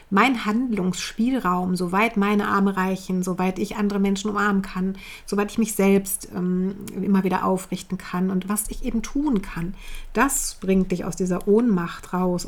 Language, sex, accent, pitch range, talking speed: German, female, German, 190-220 Hz, 165 wpm